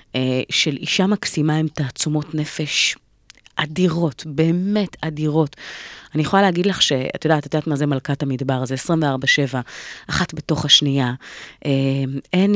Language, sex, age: Hebrew, female, 30-49